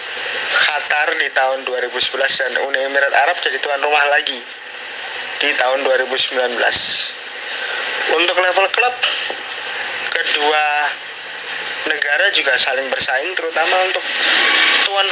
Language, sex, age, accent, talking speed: Indonesian, male, 20-39, native, 105 wpm